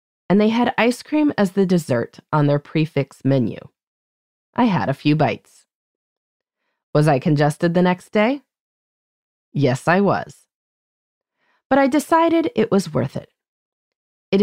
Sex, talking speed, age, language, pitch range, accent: female, 140 wpm, 30-49, English, 140-215 Hz, American